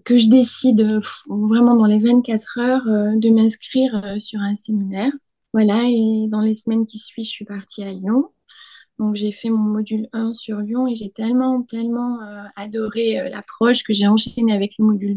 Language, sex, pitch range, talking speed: French, female, 215-245 Hz, 200 wpm